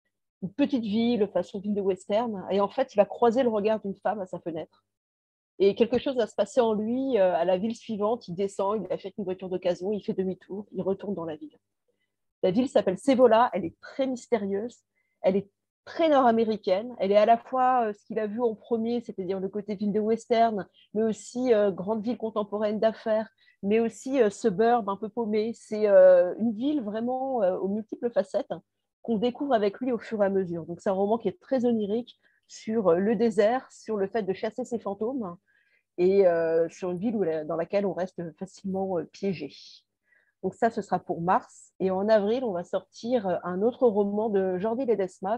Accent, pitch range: French, 190-235 Hz